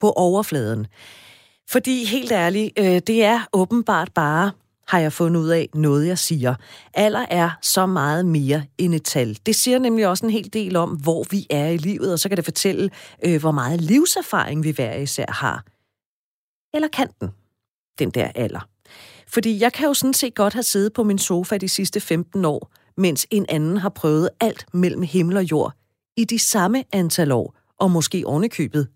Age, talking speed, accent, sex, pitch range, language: 40-59, 185 wpm, native, female, 140-200 Hz, Danish